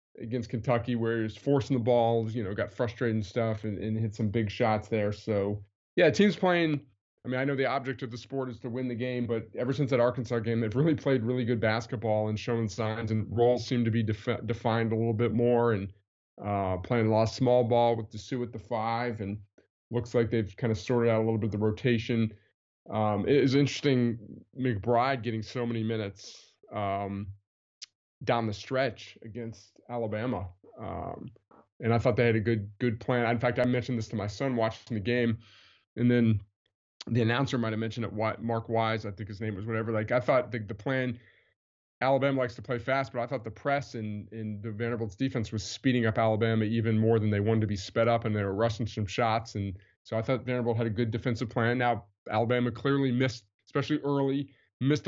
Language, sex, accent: English, male, American